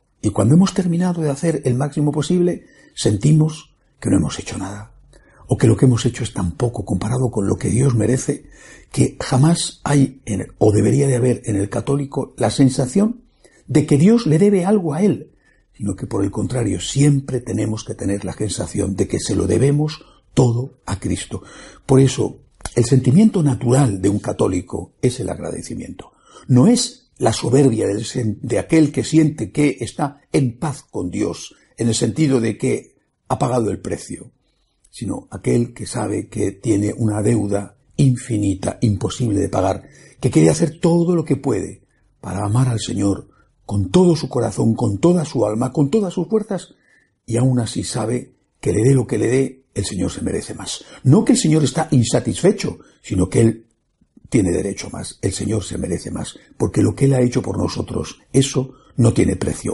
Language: Spanish